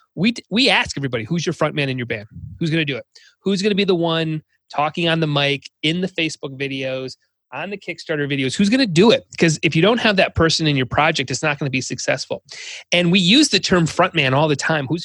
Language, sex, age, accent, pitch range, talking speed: English, male, 30-49, American, 140-190 Hz, 265 wpm